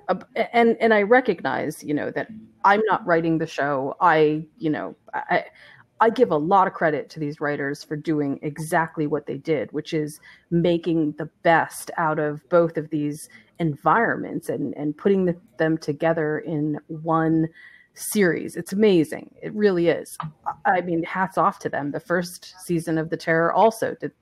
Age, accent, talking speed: 30-49, American, 175 wpm